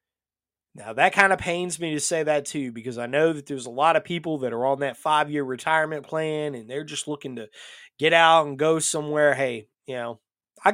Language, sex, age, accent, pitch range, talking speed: English, male, 30-49, American, 130-160 Hz, 225 wpm